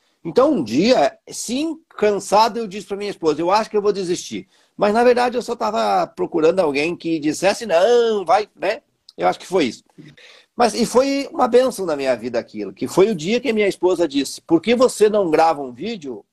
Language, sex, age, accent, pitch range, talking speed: Portuguese, male, 50-69, Brazilian, 160-230 Hz, 215 wpm